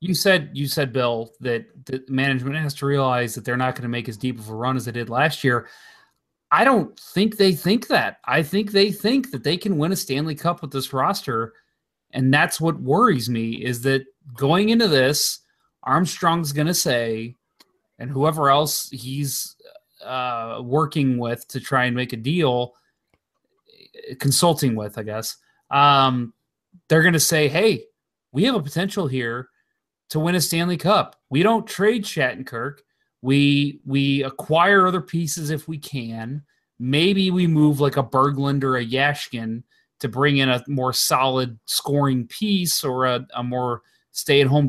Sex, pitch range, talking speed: male, 130-175 Hz, 170 wpm